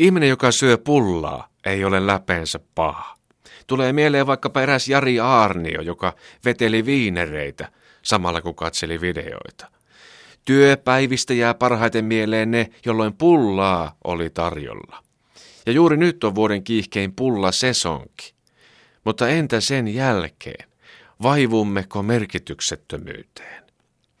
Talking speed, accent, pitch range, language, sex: 105 wpm, native, 90-130 Hz, Finnish, male